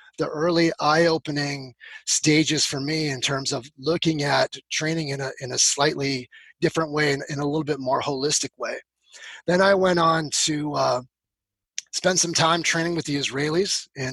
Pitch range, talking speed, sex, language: 140-165 Hz, 175 wpm, male, English